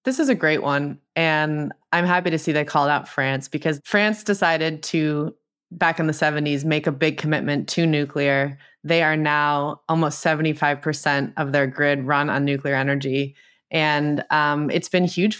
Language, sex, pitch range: English, female, 145-165 Hz